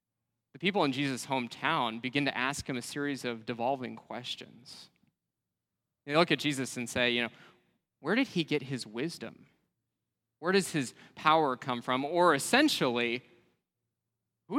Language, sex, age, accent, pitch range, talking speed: English, male, 20-39, American, 120-160 Hz, 150 wpm